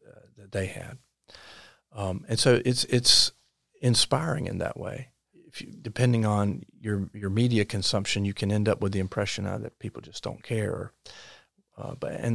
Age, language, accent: 40-59, English, American